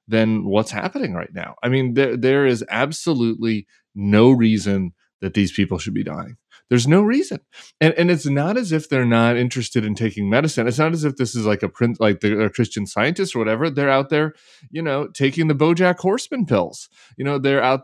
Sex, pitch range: male, 105-140 Hz